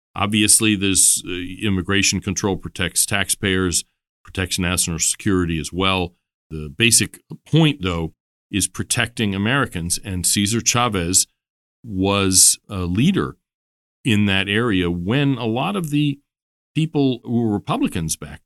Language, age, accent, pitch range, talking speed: English, 40-59, American, 85-100 Hz, 120 wpm